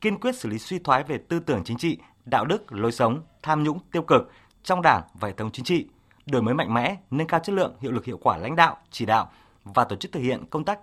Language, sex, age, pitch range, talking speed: Vietnamese, male, 20-39, 125-175 Hz, 270 wpm